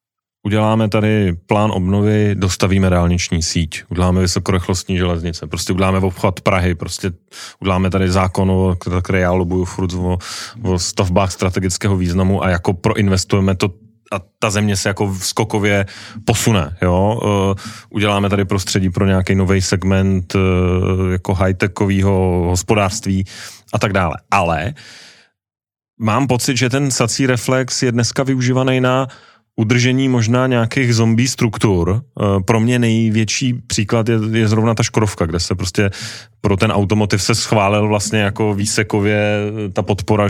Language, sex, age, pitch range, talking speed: Czech, male, 30-49, 95-120 Hz, 135 wpm